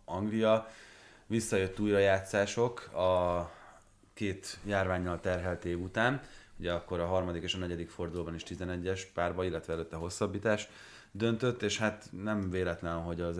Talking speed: 140 wpm